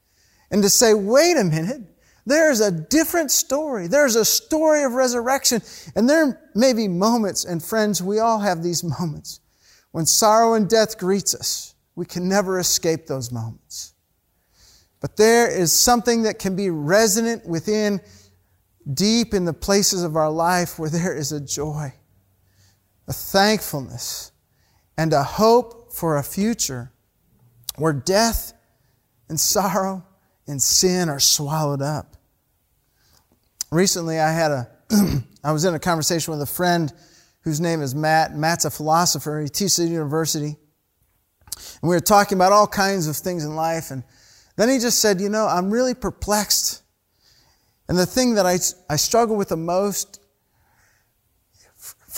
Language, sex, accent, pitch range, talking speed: English, male, American, 140-205 Hz, 150 wpm